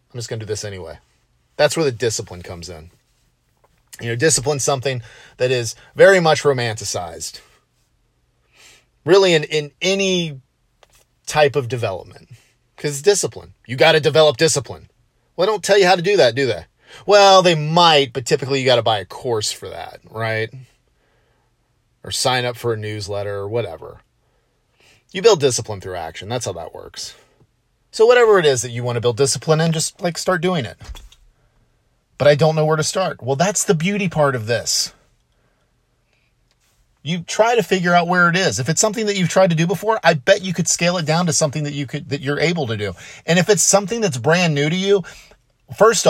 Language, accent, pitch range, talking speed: English, American, 120-165 Hz, 200 wpm